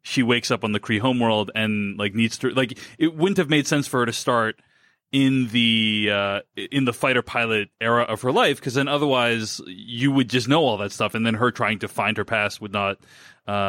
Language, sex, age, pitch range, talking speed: English, male, 30-49, 115-145 Hz, 230 wpm